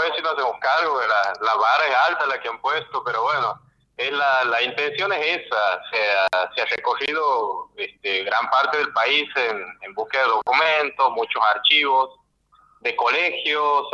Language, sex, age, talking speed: Spanish, male, 30-49, 175 wpm